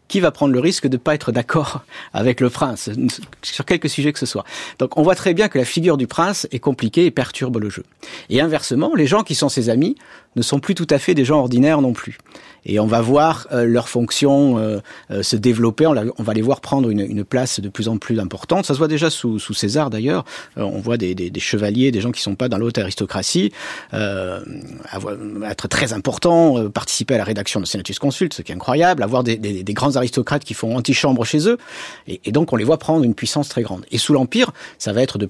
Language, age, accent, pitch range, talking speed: French, 50-69, French, 105-145 Hz, 255 wpm